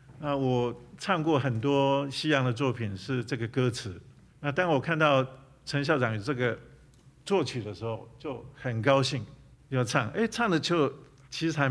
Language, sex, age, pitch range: Chinese, male, 50-69, 120-140 Hz